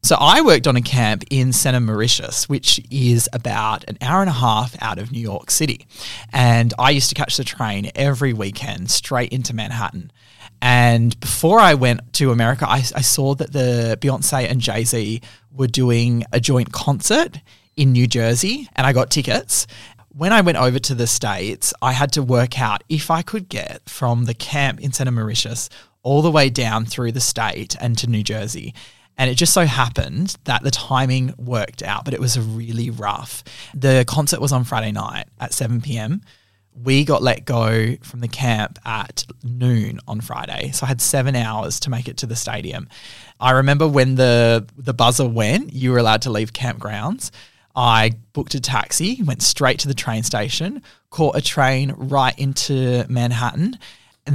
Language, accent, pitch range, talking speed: English, Australian, 115-140 Hz, 185 wpm